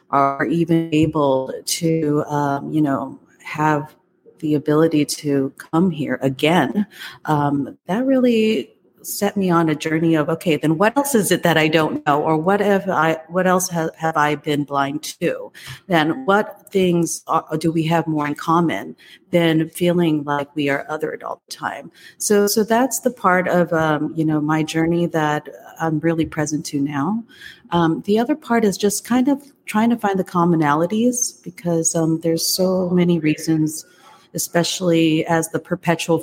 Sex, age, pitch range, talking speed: female, 30-49, 155-175 Hz, 170 wpm